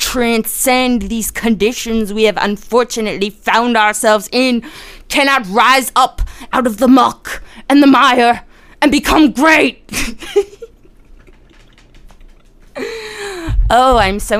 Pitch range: 195-255 Hz